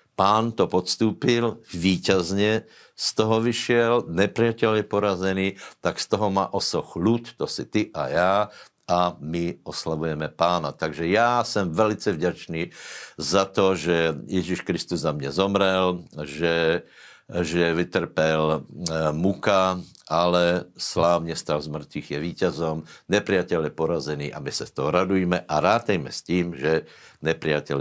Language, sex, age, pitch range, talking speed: Slovak, male, 60-79, 85-105 Hz, 140 wpm